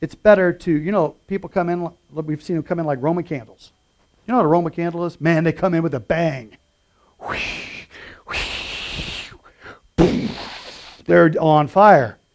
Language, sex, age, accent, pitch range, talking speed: English, male, 50-69, American, 135-185 Hz, 170 wpm